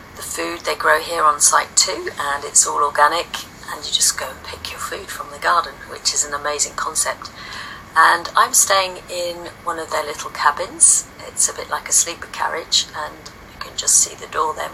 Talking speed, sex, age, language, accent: 210 wpm, female, 40-59, English, British